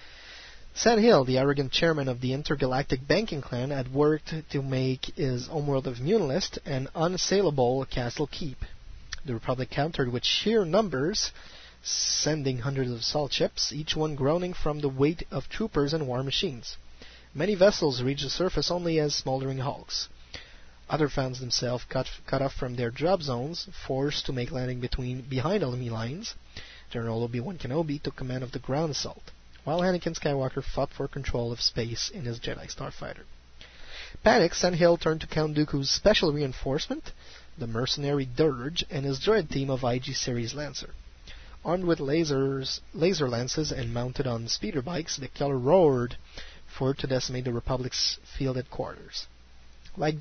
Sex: male